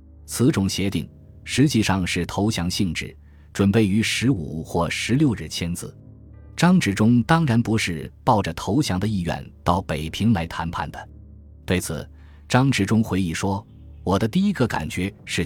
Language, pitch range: Chinese, 85-115 Hz